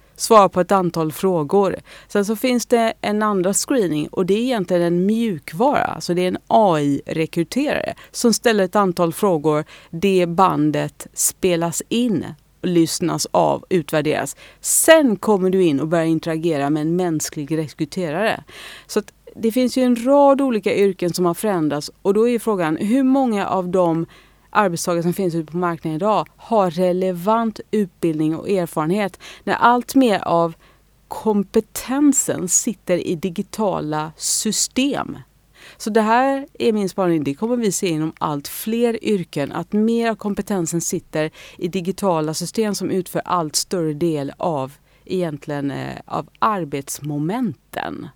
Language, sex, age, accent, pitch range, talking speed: English, female, 30-49, Swedish, 165-215 Hz, 145 wpm